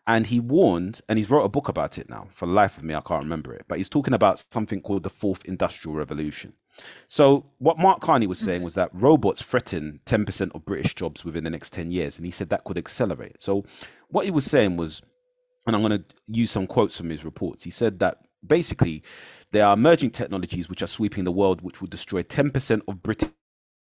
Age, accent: 30-49, British